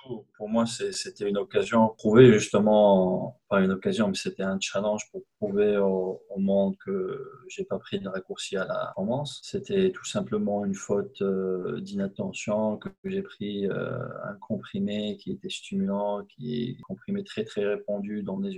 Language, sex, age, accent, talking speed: French, male, 20-39, French, 180 wpm